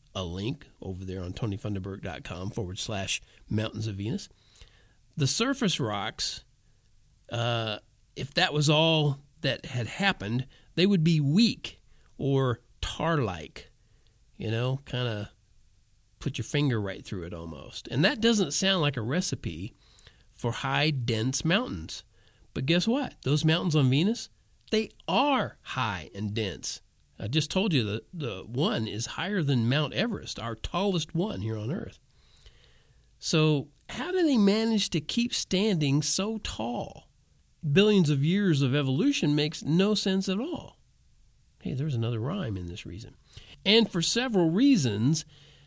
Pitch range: 110-170 Hz